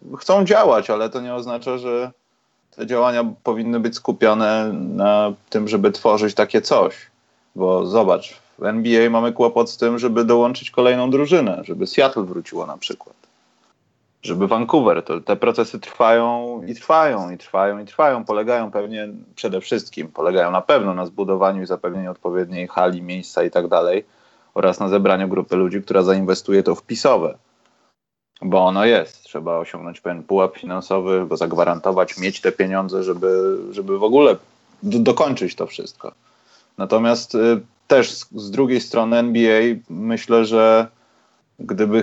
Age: 30-49